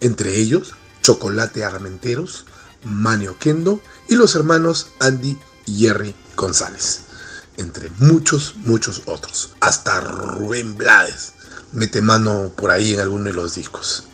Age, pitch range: 40-59, 95-120 Hz